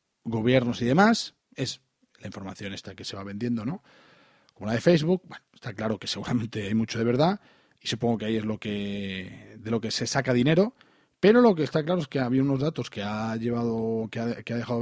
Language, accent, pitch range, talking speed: Spanish, Spanish, 115-150 Hz, 225 wpm